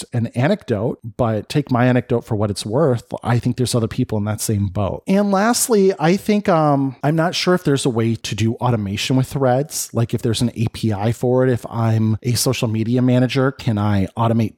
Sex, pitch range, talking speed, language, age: male, 115-140 Hz, 215 wpm, English, 30-49